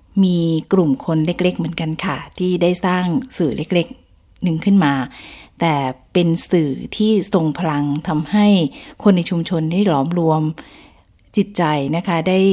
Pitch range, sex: 150-185 Hz, female